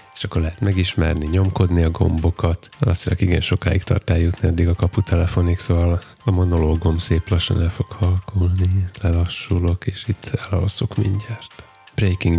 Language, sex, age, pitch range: Hungarian, male, 20-39, 85-100 Hz